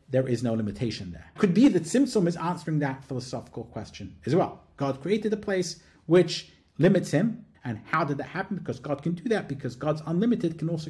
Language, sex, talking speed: English, male, 210 wpm